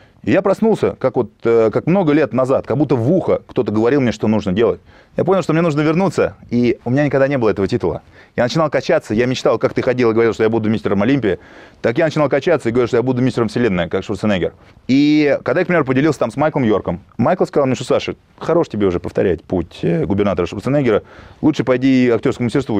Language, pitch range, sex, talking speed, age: Russian, 105-145 Hz, male, 225 wpm, 20-39